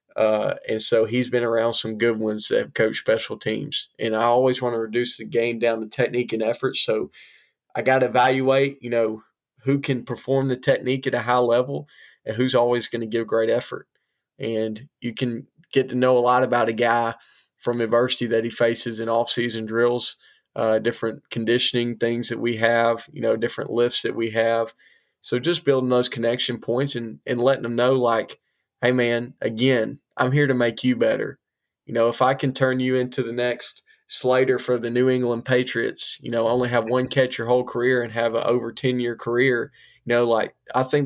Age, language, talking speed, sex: 20-39, English, 205 wpm, male